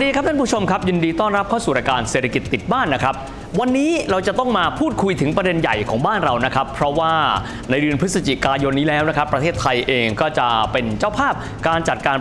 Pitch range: 135-200 Hz